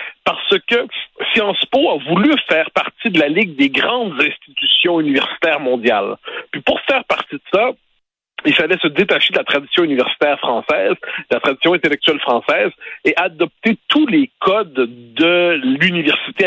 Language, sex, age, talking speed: French, male, 60-79, 155 wpm